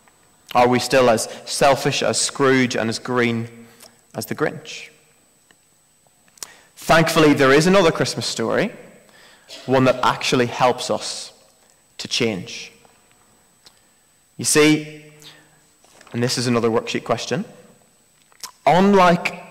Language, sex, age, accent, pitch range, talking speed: English, male, 20-39, British, 120-150 Hz, 110 wpm